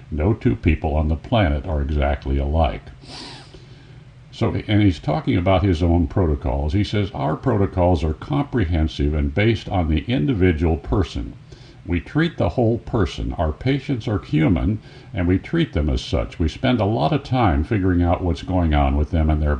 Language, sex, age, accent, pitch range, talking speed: English, male, 60-79, American, 80-120 Hz, 180 wpm